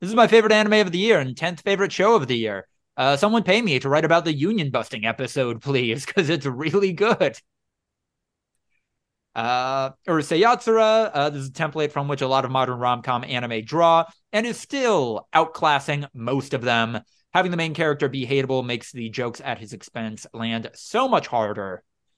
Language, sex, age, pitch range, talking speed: English, male, 20-39, 130-185 Hz, 185 wpm